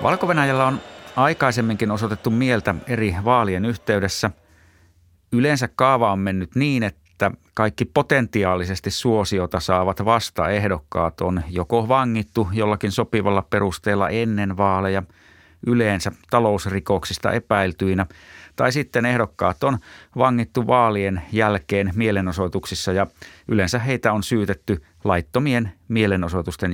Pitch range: 90-115 Hz